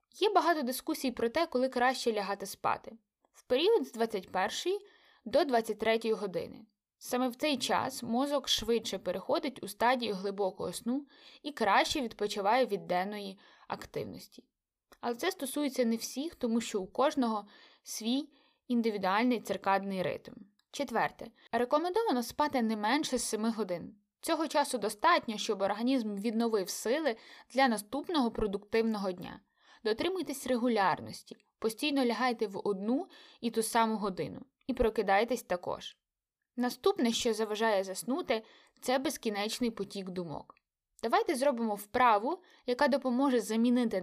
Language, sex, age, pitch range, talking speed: Ukrainian, female, 20-39, 210-275 Hz, 125 wpm